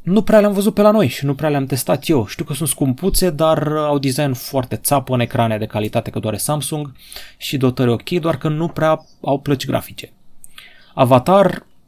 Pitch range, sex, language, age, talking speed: 120-150 Hz, male, Romanian, 20-39, 200 wpm